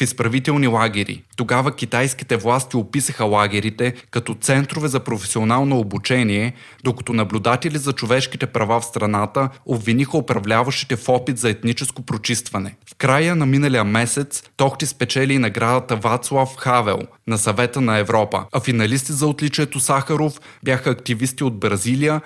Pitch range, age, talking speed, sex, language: 110-135 Hz, 20-39, 135 wpm, male, Bulgarian